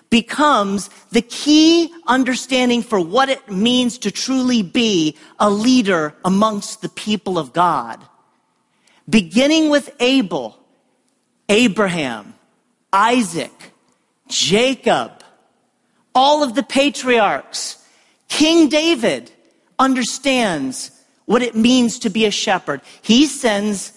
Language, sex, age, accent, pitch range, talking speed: English, male, 40-59, American, 215-285 Hz, 100 wpm